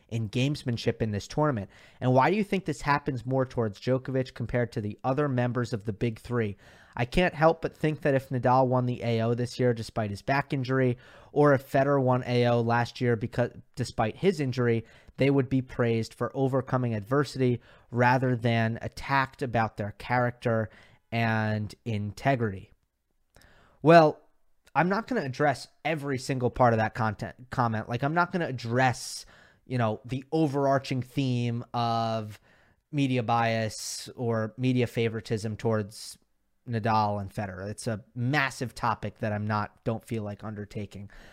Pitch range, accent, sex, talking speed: 110-135 Hz, American, male, 165 wpm